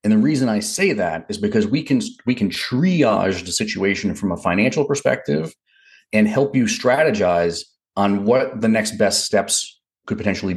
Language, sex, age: English, male, 40-59